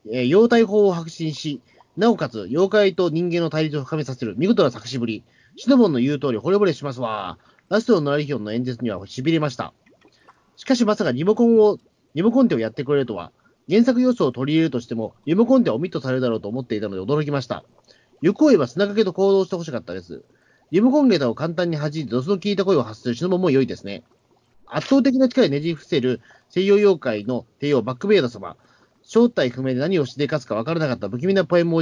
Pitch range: 130-200 Hz